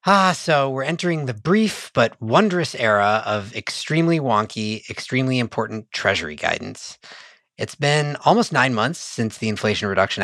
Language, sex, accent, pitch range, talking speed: English, male, American, 105-140 Hz, 145 wpm